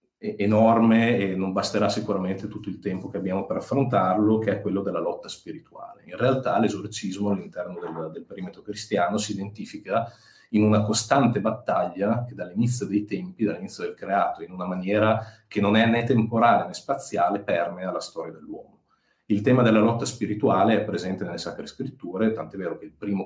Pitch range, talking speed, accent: 95-110 Hz, 175 wpm, native